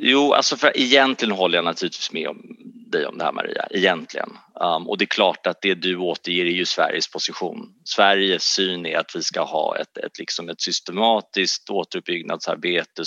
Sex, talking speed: male, 195 wpm